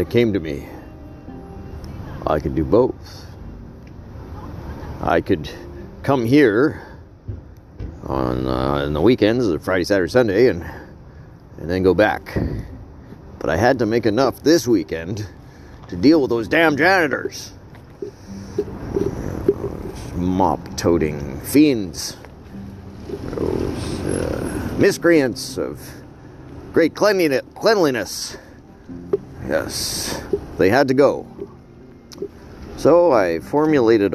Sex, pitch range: male, 75-115 Hz